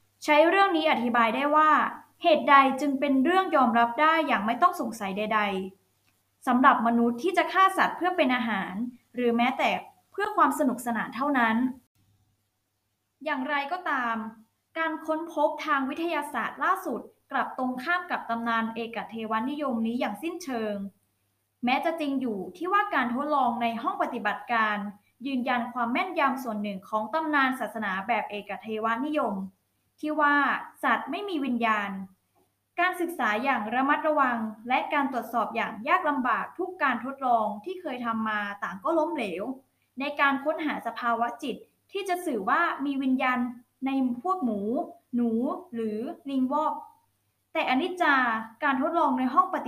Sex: female